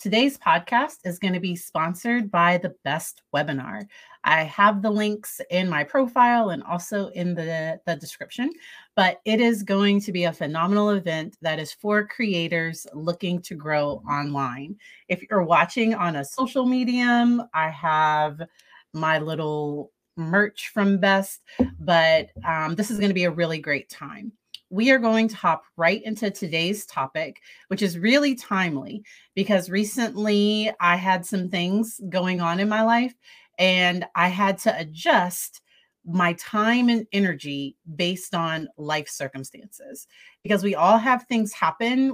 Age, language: 30-49, English